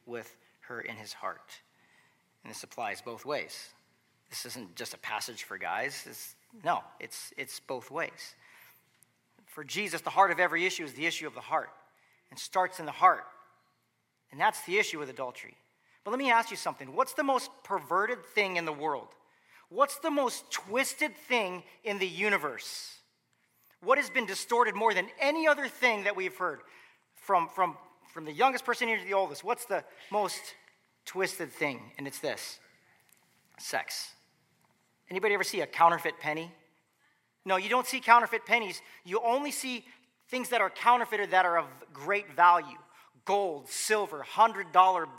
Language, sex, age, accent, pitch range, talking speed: English, male, 40-59, American, 175-255 Hz, 170 wpm